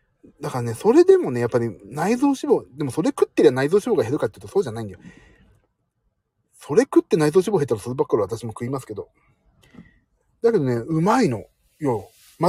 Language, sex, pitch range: Japanese, male, 110-170 Hz